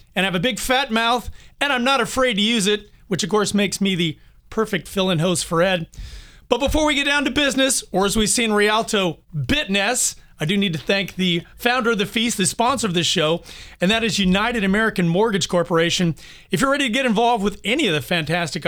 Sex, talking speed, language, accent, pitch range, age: male, 230 wpm, English, American, 170-225 Hz, 40-59